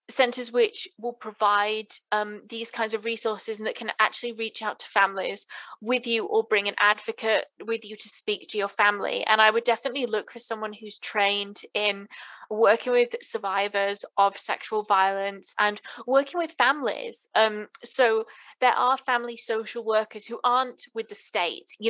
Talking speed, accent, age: 175 wpm, British, 20-39